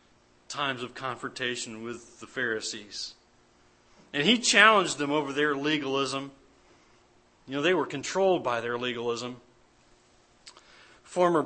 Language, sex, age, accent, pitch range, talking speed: English, male, 40-59, American, 125-195 Hz, 115 wpm